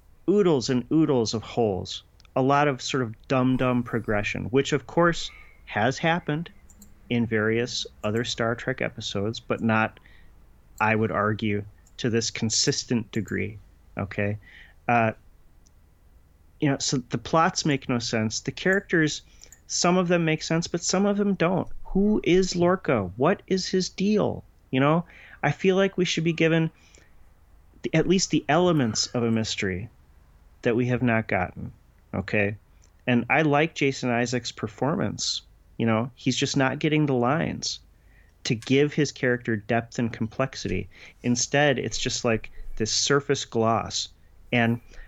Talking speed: 150 wpm